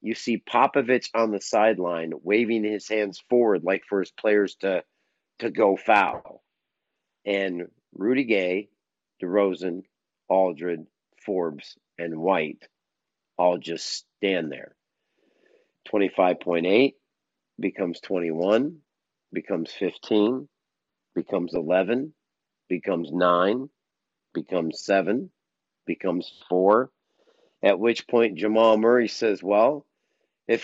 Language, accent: English, American